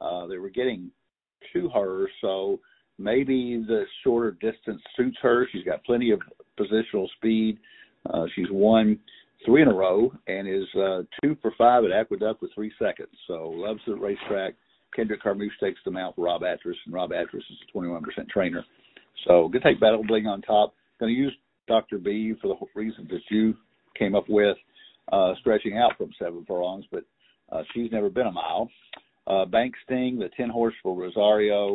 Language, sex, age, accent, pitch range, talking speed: English, male, 50-69, American, 100-120 Hz, 185 wpm